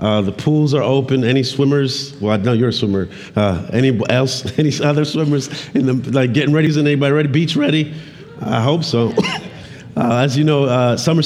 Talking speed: 185 wpm